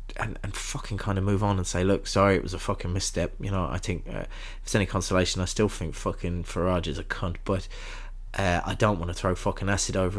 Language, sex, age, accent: English, male, 20-39, British